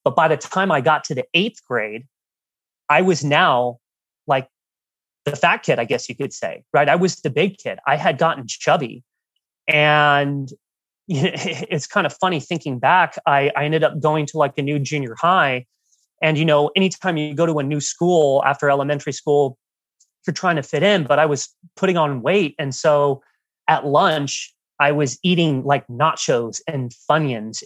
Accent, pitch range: American, 140-165 Hz